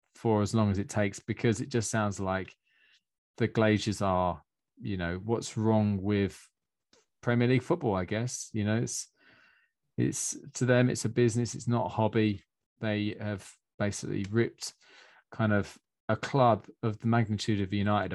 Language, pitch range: English, 105-120 Hz